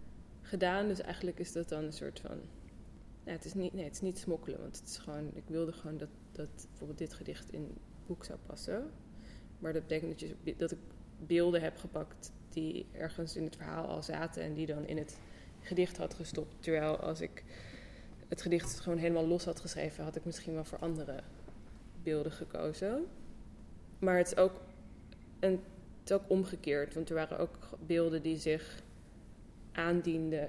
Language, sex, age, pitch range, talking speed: Dutch, female, 20-39, 155-175 Hz, 185 wpm